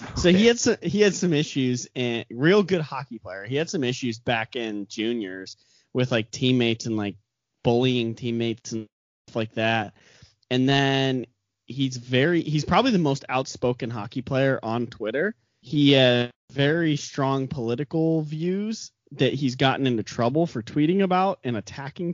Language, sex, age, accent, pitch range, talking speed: English, male, 30-49, American, 120-155 Hz, 160 wpm